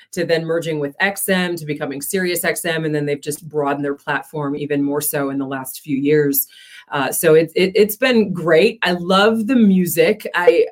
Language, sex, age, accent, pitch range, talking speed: English, female, 30-49, American, 155-195 Hz, 185 wpm